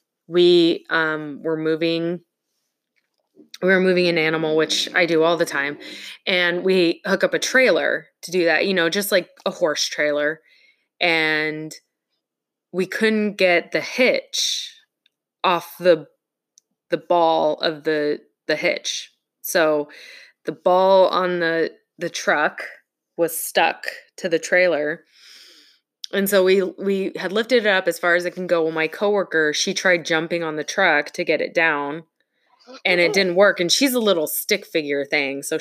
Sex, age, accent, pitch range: female, 20-39, American, 160-210 Hz